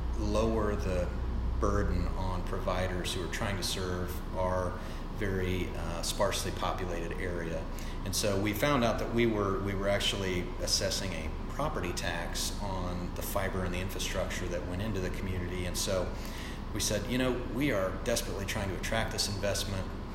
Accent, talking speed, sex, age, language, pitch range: American, 165 wpm, male, 30-49, English, 90-105 Hz